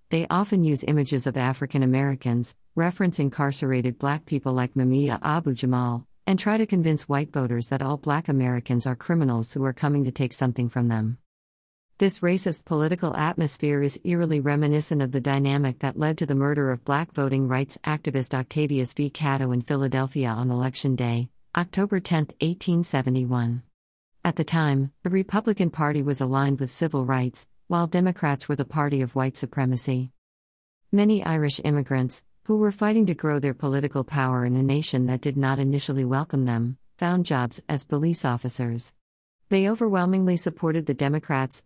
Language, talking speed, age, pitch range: English, 165 wpm, 50-69, 130-165 Hz